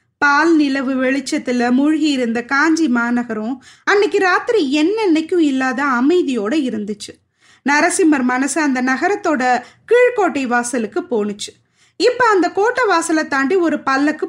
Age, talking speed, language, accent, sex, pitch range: 20-39, 115 wpm, Tamil, native, female, 260-355 Hz